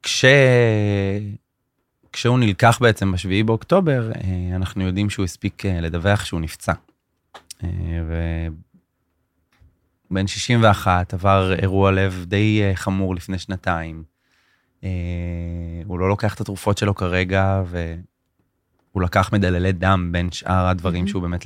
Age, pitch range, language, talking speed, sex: 20-39, 90-110 Hz, Hebrew, 105 wpm, male